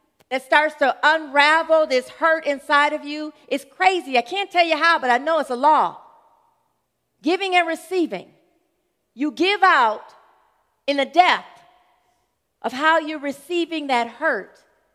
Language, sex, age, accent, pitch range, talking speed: English, female, 40-59, American, 185-280 Hz, 150 wpm